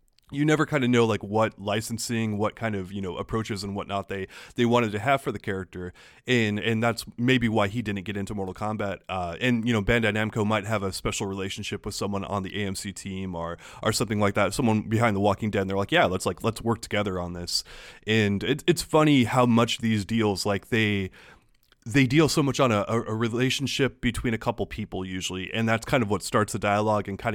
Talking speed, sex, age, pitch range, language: 235 wpm, male, 20-39, 100-125 Hz, English